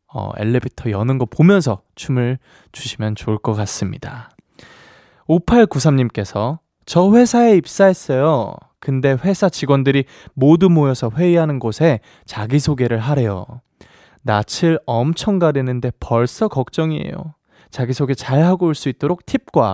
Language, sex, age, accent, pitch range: Korean, male, 20-39, native, 115-160 Hz